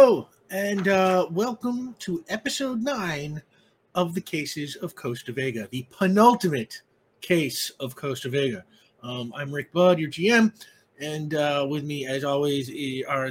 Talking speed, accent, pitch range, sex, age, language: 145 wpm, American, 125-180 Hz, male, 30-49, English